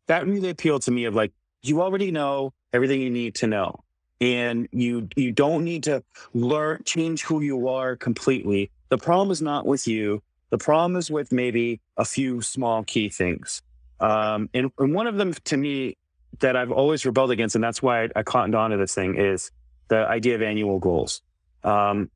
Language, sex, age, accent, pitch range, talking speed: English, male, 30-49, American, 110-145 Hz, 200 wpm